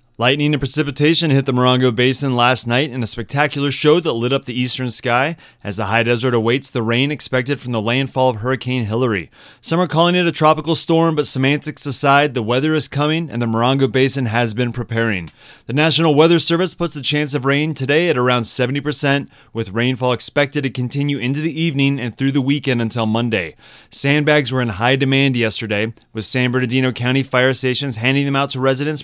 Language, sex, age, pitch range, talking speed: English, male, 30-49, 120-150 Hz, 200 wpm